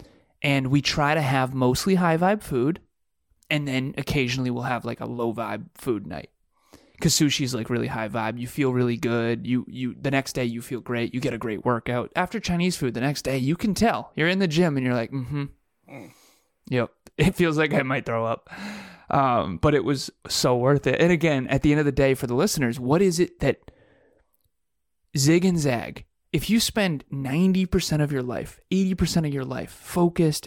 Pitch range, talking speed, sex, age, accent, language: 125-165 Hz, 210 wpm, male, 20-39, American, English